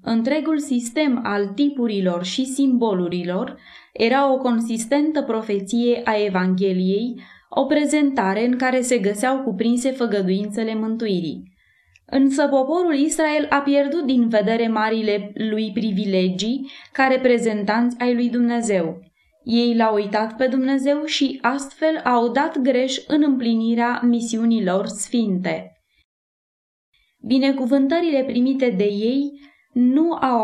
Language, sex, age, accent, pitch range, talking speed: Romanian, female, 20-39, native, 210-270 Hz, 110 wpm